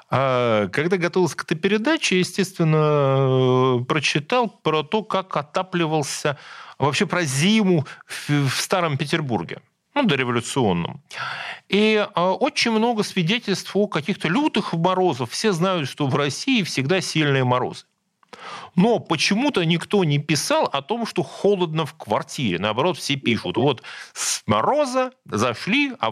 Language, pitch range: Russian, 125-185 Hz